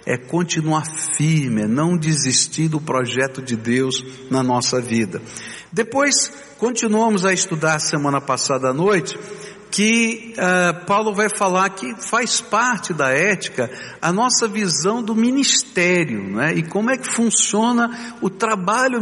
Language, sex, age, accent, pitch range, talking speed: Portuguese, male, 60-79, Brazilian, 155-205 Hz, 140 wpm